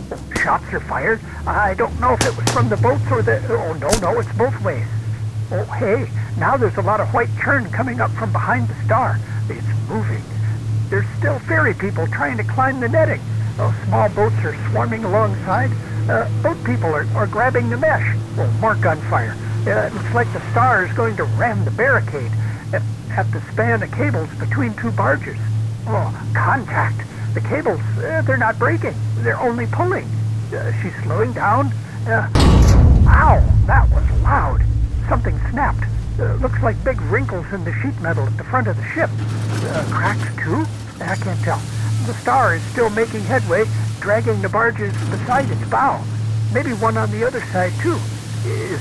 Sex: male